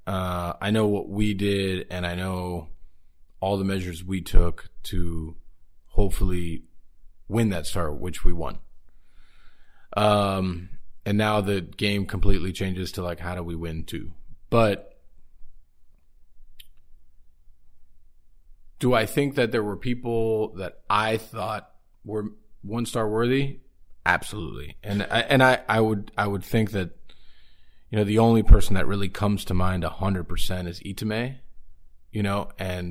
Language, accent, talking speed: English, American, 140 wpm